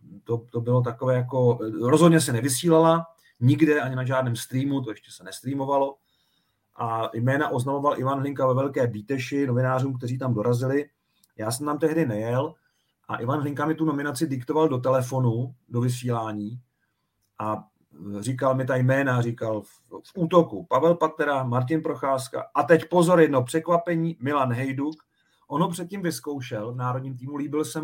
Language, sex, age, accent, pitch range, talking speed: Czech, male, 40-59, native, 120-145 Hz, 155 wpm